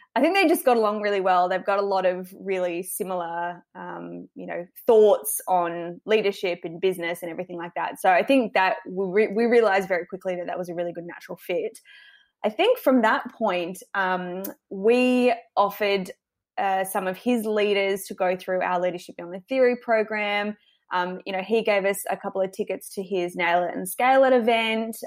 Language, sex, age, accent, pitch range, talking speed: English, female, 20-39, Australian, 180-220 Hz, 205 wpm